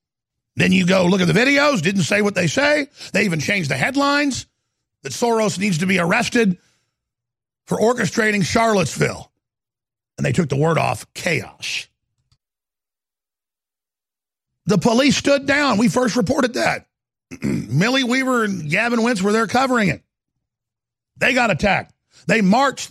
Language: English